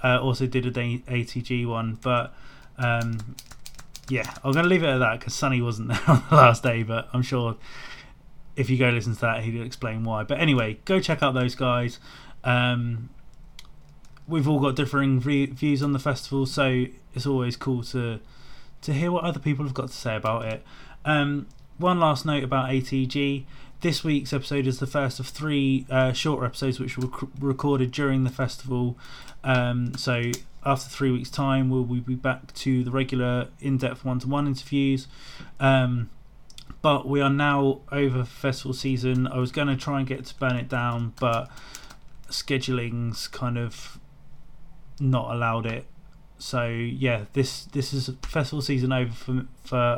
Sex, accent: male, British